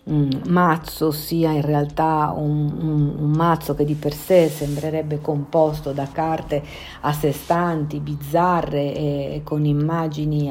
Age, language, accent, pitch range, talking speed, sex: 50-69, Italian, native, 135-160 Hz, 145 wpm, female